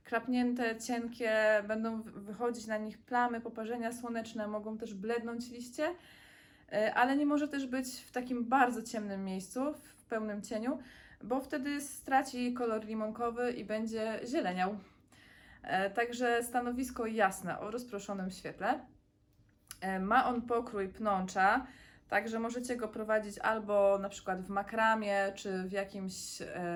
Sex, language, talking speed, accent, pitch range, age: female, Polish, 125 wpm, native, 205-245 Hz, 20-39